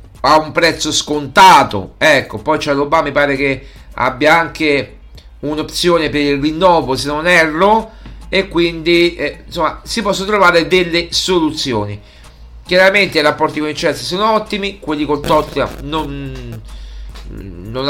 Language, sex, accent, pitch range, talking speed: Italian, male, native, 130-170 Hz, 135 wpm